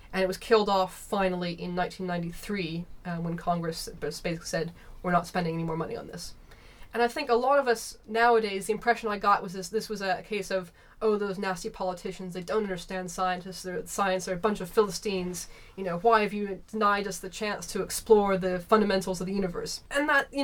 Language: English